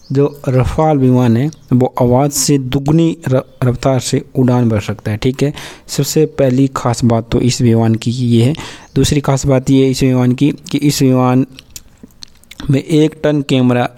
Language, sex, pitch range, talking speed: Hindi, male, 120-140 Hz, 170 wpm